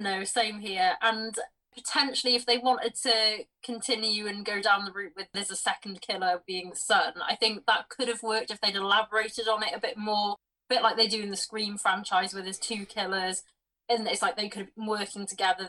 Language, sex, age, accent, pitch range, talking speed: English, female, 20-39, British, 195-240 Hz, 220 wpm